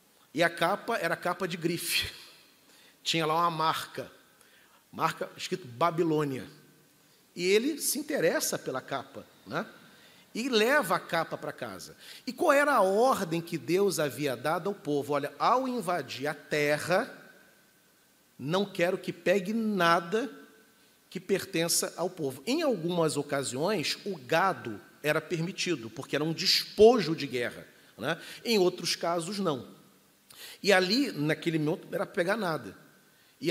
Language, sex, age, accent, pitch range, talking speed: Portuguese, male, 40-59, Brazilian, 155-210 Hz, 140 wpm